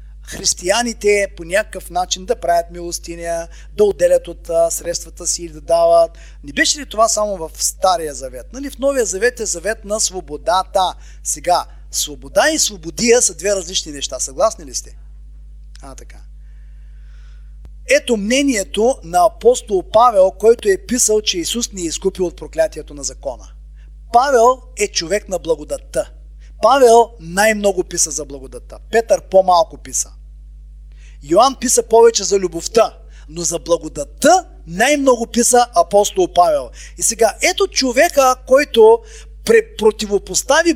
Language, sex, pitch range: Bulgarian, male, 165-245 Hz